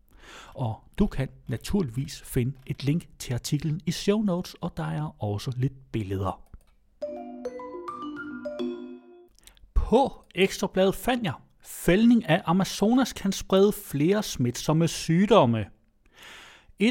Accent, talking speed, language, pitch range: native, 110 wpm, Danish, 125-170 Hz